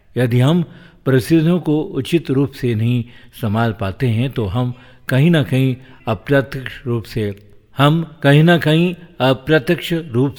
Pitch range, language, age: 110-140 Hz, Hindi, 50-69